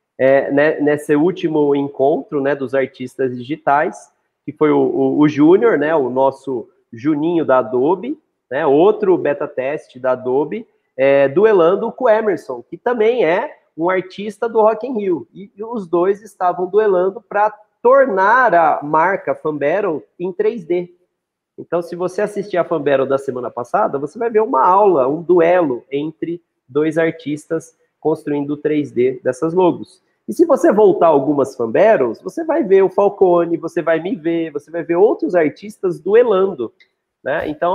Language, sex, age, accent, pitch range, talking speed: Portuguese, male, 30-49, Brazilian, 150-215 Hz, 155 wpm